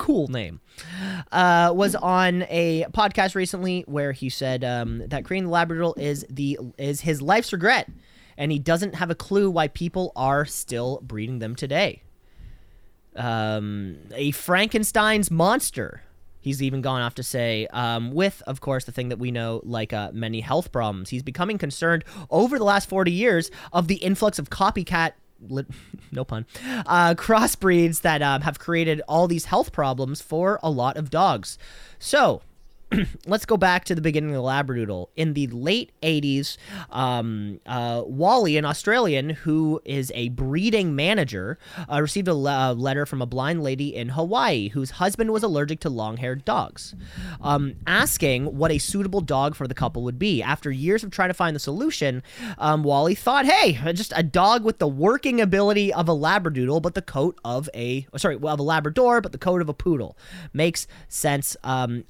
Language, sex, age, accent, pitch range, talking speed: English, male, 20-39, American, 130-180 Hz, 180 wpm